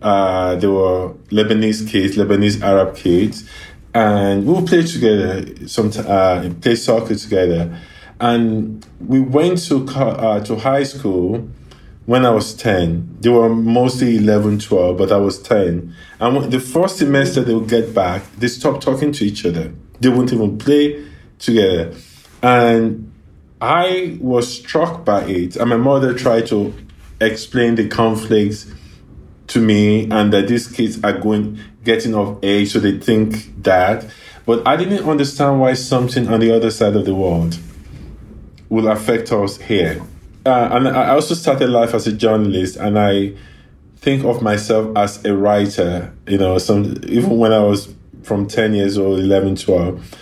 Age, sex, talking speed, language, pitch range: 20-39, male, 160 wpm, English, 95-120 Hz